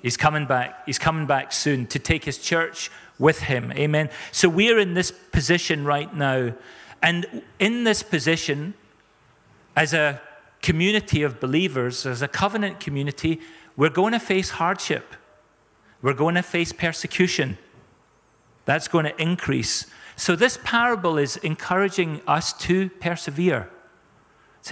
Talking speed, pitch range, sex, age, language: 140 wpm, 145-180 Hz, male, 40-59, English